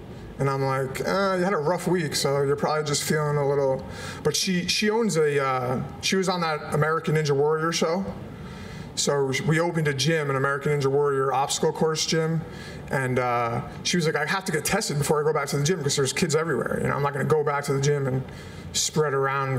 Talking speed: 235 wpm